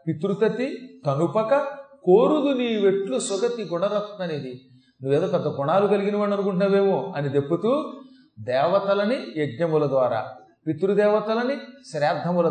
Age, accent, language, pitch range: 40-59, native, Telugu, 150-205 Hz